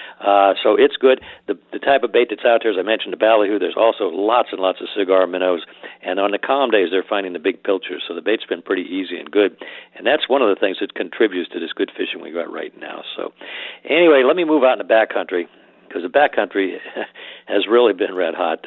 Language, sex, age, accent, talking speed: English, male, 60-79, American, 245 wpm